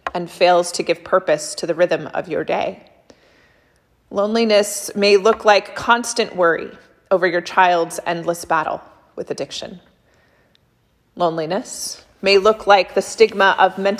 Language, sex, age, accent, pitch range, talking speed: English, female, 30-49, American, 180-215 Hz, 135 wpm